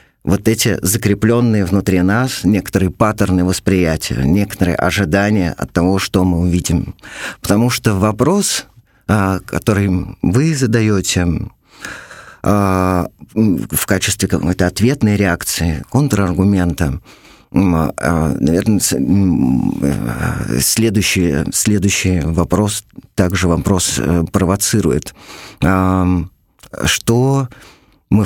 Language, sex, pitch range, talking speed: Russian, male, 85-105 Hz, 75 wpm